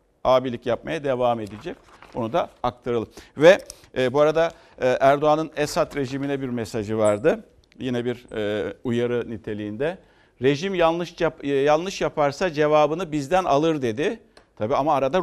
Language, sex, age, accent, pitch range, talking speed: Turkish, male, 60-79, native, 110-150 Hz, 140 wpm